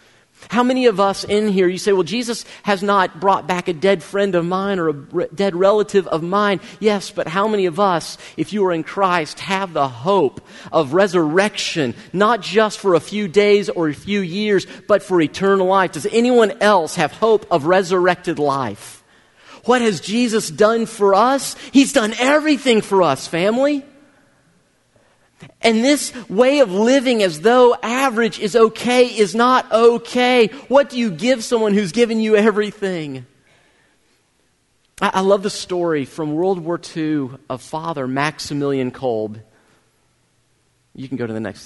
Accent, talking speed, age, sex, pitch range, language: American, 165 wpm, 40-59, male, 150-215 Hz, English